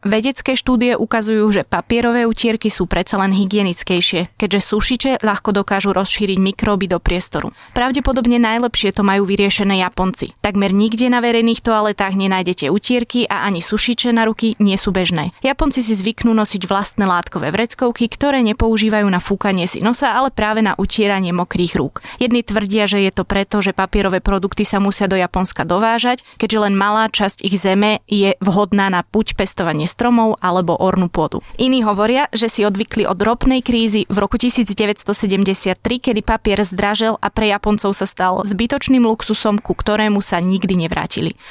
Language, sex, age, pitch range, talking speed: Slovak, female, 20-39, 195-230 Hz, 160 wpm